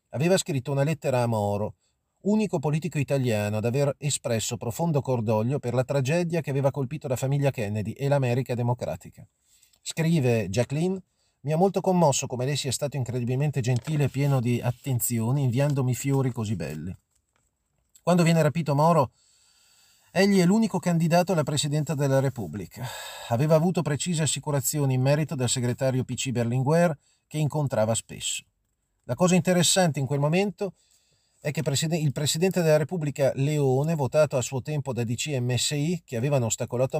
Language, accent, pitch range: Italian, native, 130-170 Hz